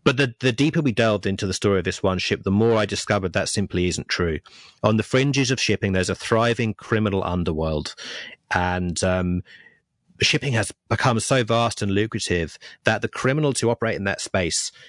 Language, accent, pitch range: English, British, 95-115 Hz